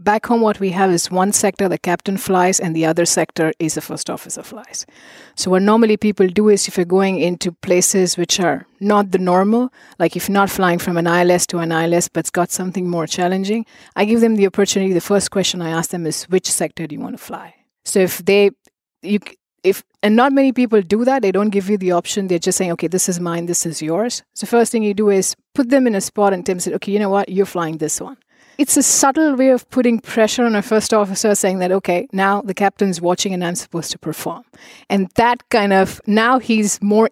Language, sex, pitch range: English, female, 175-215 Hz